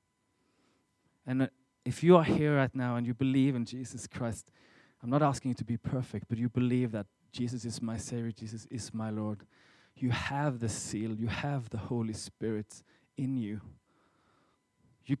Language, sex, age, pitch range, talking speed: English, male, 20-39, 115-145 Hz, 175 wpm